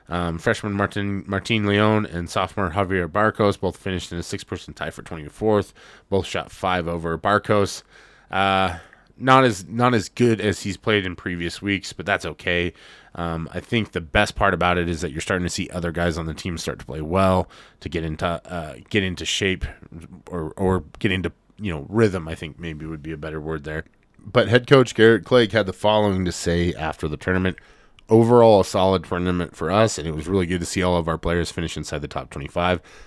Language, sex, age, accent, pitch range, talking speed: English, male, 20-39, American, 85-105 Hz, 215 wpm